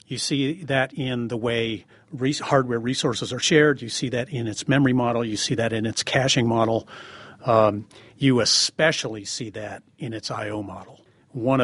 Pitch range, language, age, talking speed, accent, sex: 110-130 Hz, English, 40-59, 175 wpm, American, male